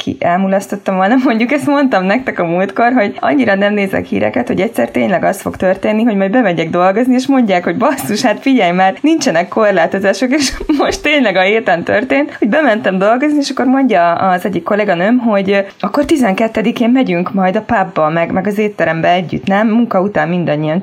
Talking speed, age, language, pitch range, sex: 185 wpm, 20-39, Hungarian, 170-230 Hz, female